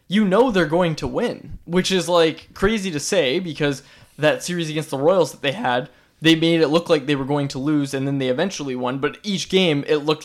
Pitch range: 140-175 Hz